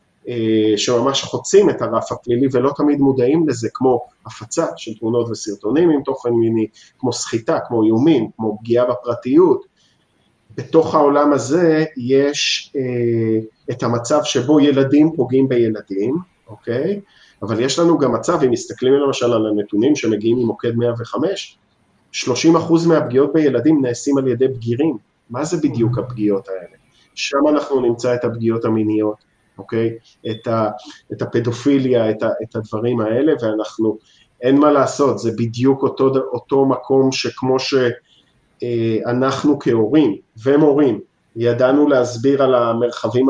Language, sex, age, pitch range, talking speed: Hebrew, male, 30-49, 115-145 Hz, 130 wpm